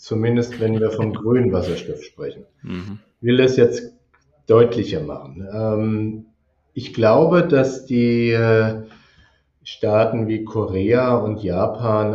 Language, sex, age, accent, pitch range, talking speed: German, male, 40-59, German, 100-130 Hz, 110 wpm